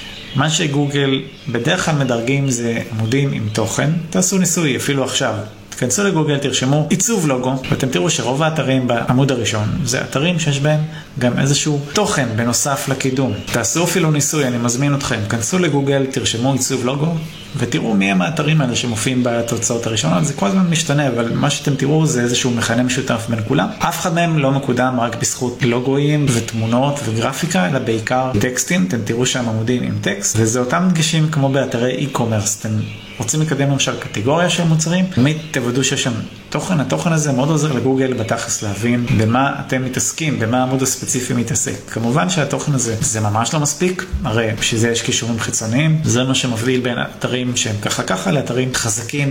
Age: 30-49